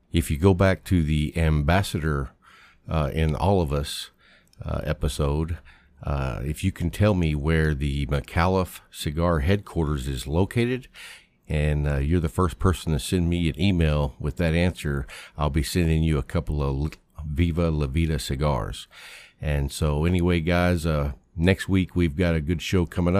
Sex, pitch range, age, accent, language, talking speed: male, 75-90 Hz, 50-69, American, English, 170 wpm